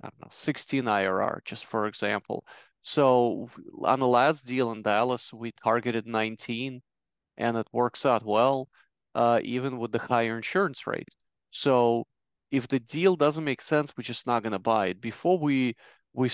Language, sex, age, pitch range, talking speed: English, male, 20-39, 115-135 Hz, 175 wpm